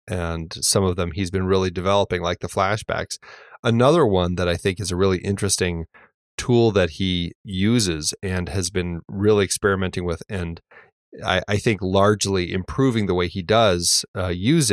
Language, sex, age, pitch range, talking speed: English, male, 30-49, 90-105 Hz, 170 wpm